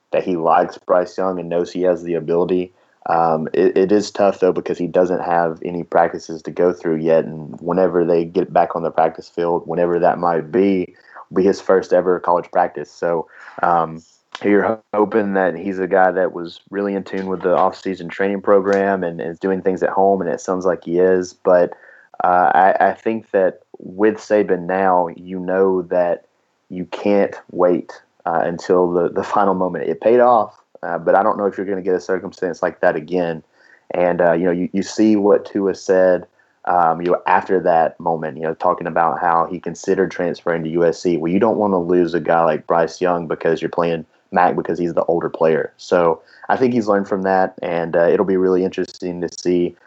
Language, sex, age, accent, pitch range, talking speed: English, male, 30-49, American, 85-95 Hz, 210 wpm